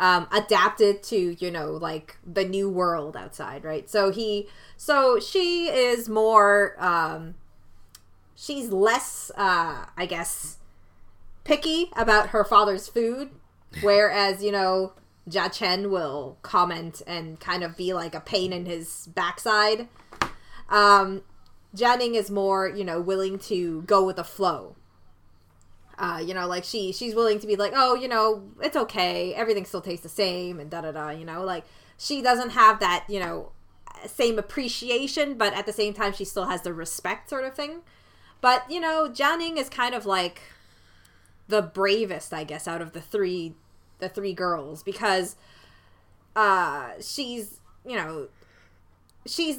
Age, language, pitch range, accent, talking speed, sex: 20-39, English, 170-230 Hz, American, 155 wpm, female